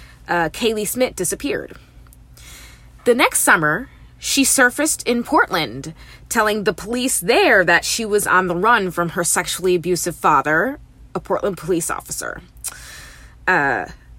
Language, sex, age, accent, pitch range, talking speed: English, female, 20-39, American, 165-220 Hz, 130 wpm